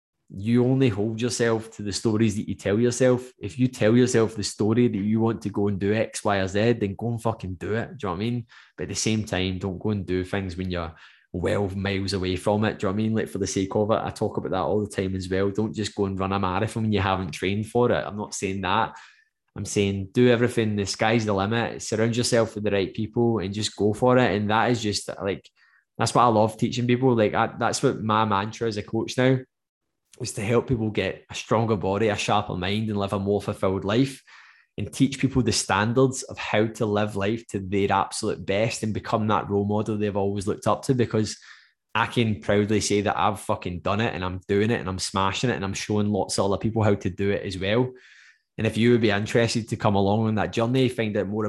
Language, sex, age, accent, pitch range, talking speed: English, male, 10-29, British, 100-115 Hz, 260 wpm